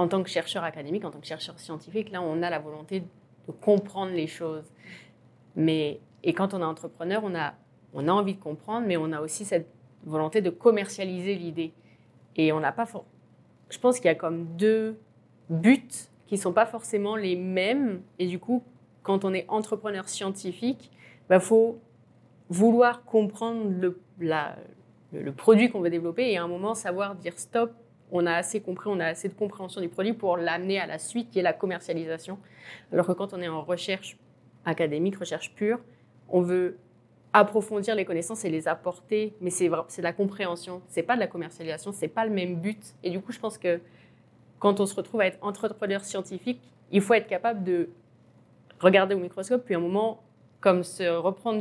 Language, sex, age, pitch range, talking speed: French, female, 30-49, 165-205 Hz, 200 wpm